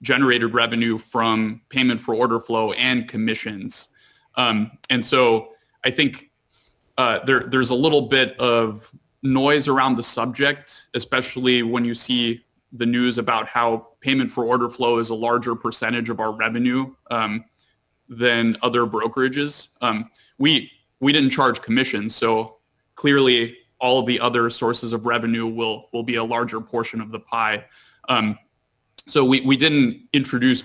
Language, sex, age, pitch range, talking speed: English, male, 30-49, 115-125 Hz, 155 wpm